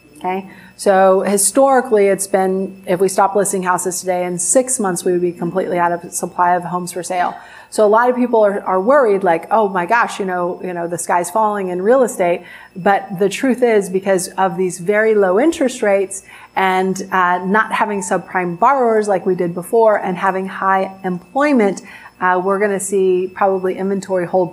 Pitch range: 185-210 Hz